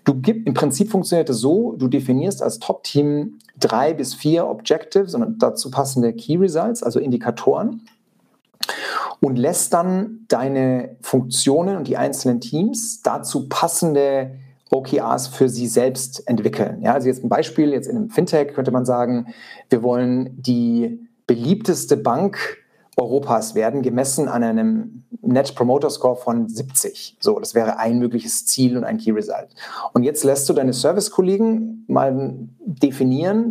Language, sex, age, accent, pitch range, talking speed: German, male, 40-59, German, 125-195 Hz, 150 wpm